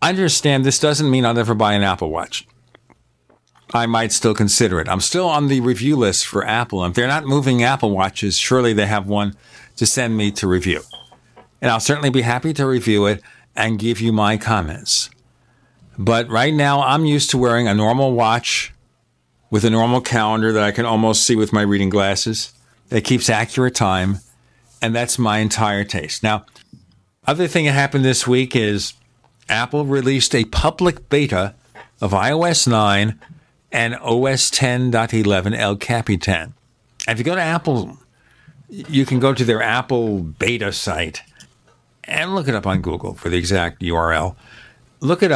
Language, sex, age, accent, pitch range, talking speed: English, male, 50-69, American, 105-130 Hz, 170 wpm